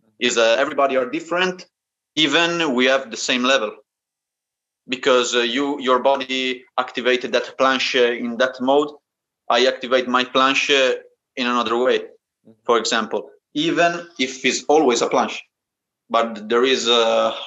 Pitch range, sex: 115-135 Hz, male